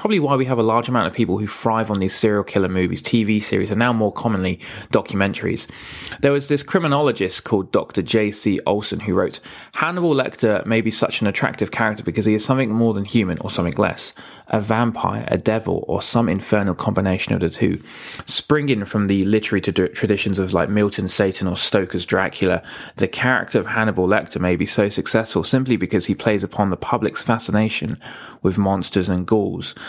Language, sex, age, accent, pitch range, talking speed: English, male, 20-39, British, 100-120 Hz, 190 wpm